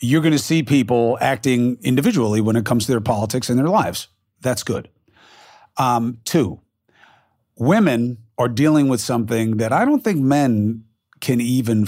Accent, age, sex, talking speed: American, 40-59, male, 160 wpm